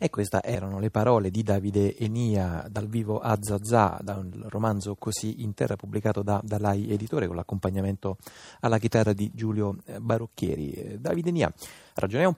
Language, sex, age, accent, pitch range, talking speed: Italian, male, 30-49, native, 95-110 Hz, 160 wpm